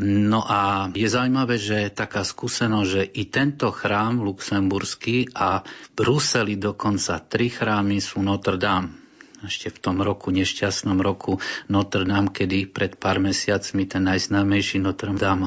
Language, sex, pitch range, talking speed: Slovak, male, 100-110 Hz, 145 wpm